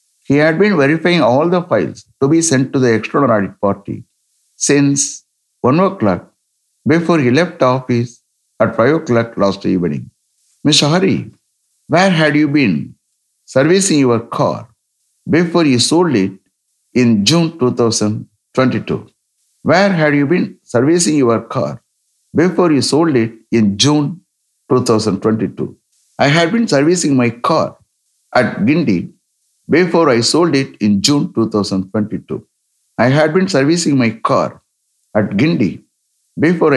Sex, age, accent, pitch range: male, 60-79, Indian, 110-155 Hz